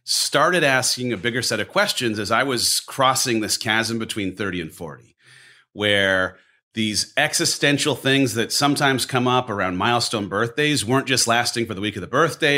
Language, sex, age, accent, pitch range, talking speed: English, male, 30-49, American, 105-130 Hz, 175 wpm